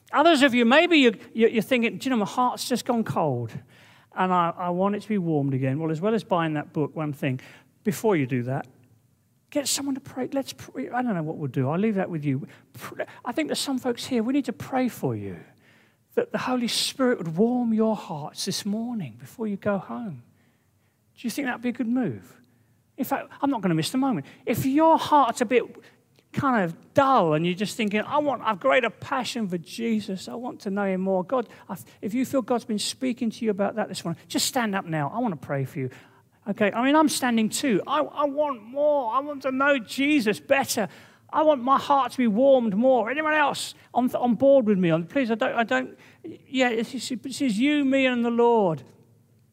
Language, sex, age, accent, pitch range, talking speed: English, male, 40-59, British, 170-270 Hz, 230 wpm